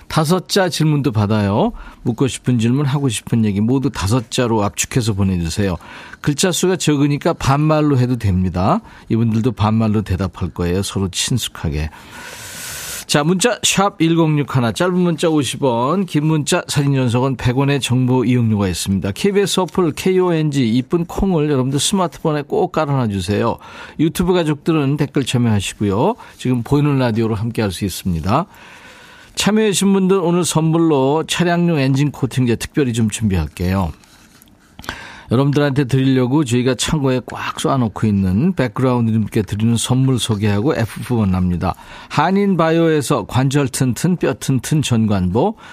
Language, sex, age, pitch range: Korean, male, 40-59, 115-160 Hz